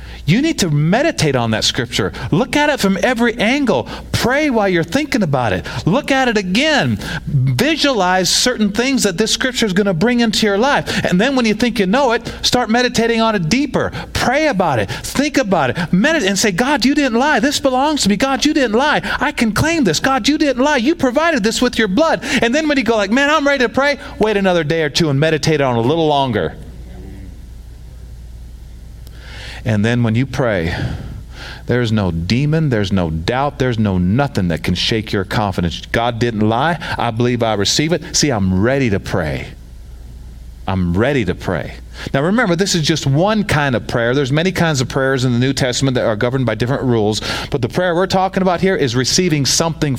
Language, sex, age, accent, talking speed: English, male, 40-59, American, 210 wpm